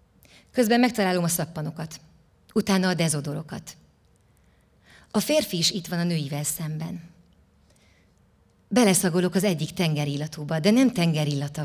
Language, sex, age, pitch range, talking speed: Hungarian, female, 30-49, 150-190 Hz, 115 wpm